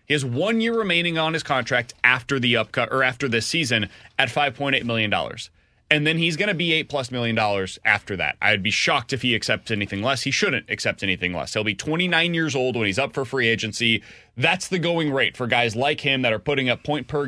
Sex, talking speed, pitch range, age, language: male, 235 wpm, 120-160 Hz, 30-49, English